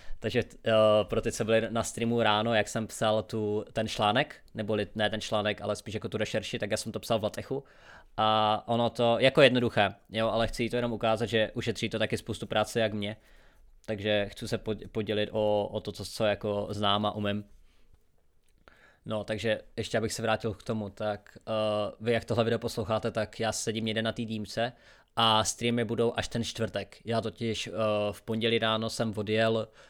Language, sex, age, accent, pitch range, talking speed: Czech, male, 20-39, native, 105-115 Hz, 200 wpm